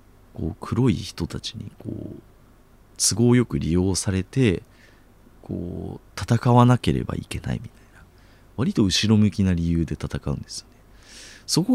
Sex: male